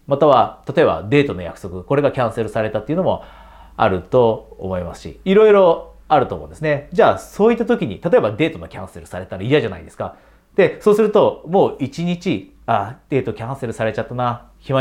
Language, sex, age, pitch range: Japanese, male, 40-59, 105-175 Hz